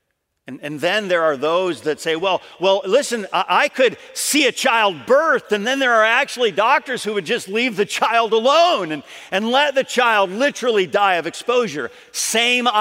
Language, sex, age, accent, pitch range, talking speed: English, male, 50-69, American, 155-225 Hz, 185 wpm